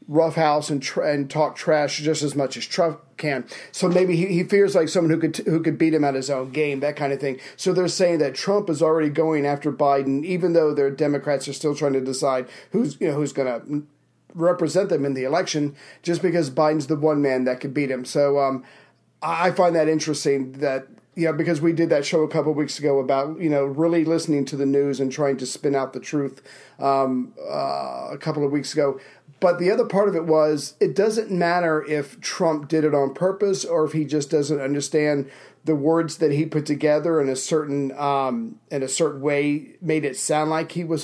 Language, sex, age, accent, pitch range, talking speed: English, male, 40-59, American, 140-165 Hz, 230 wpm